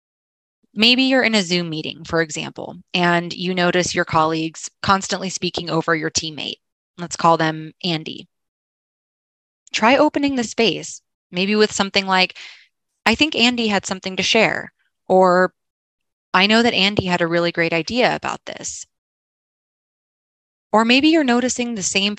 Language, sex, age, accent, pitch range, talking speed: English, female, 20-39, American, 165-215 Hz, 150 wpm